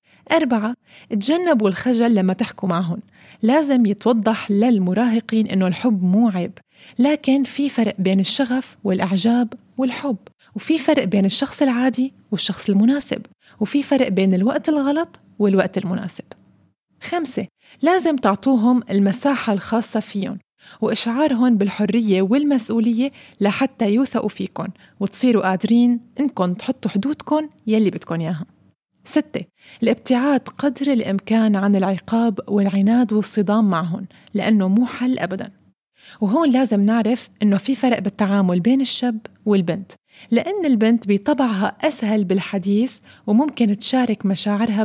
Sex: female